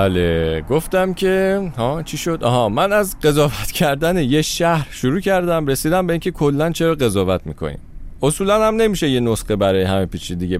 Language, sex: Persian, male